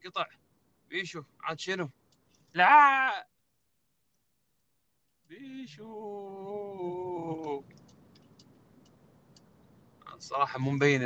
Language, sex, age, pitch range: Arabic, male, 20-39, 125-160 Hz